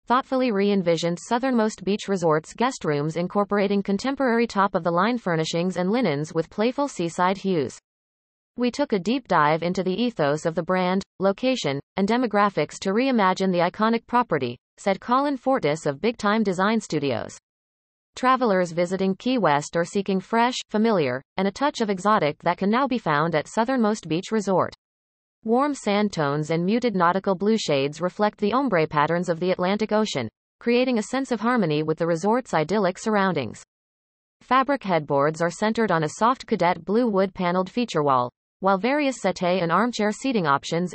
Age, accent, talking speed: 30-49, American, 165 wpm